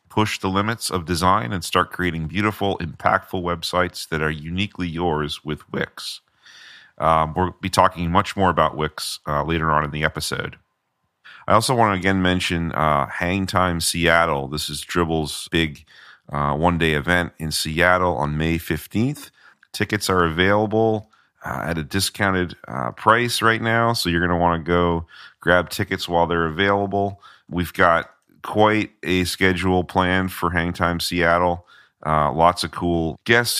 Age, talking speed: 40-59, 165 wpm